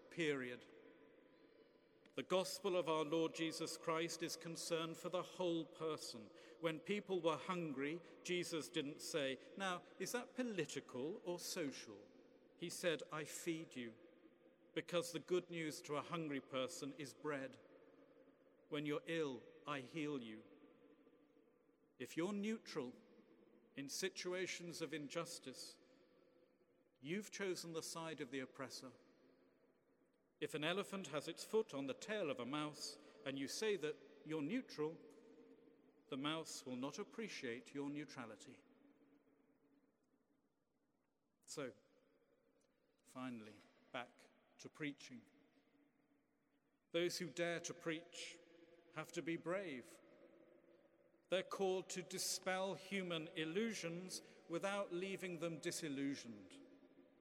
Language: English